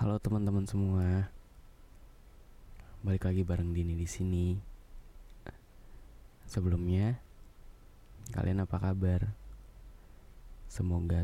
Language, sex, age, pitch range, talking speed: Indonesian, male, 20-39, 80-95 Hz, 75 wpm